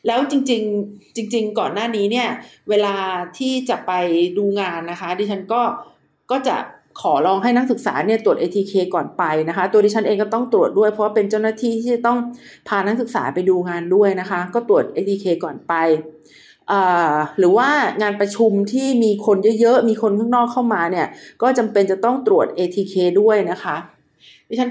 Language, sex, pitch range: Thai, female, 195-245 Hz